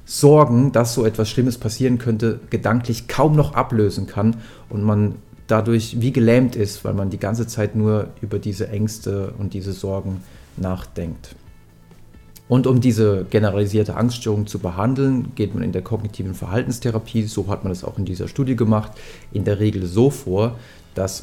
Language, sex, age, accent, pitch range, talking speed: German, male, 40-59, German, 95-115 Hz, 165 wpm